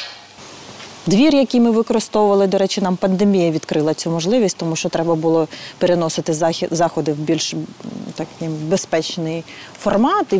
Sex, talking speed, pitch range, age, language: female, 135 wpm, 165-215 Hz, 30-49, Ukrainian